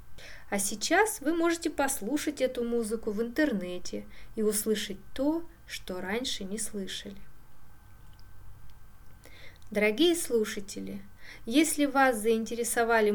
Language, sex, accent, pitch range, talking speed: Russian, female, native, 195-265 Hz, 95 wpm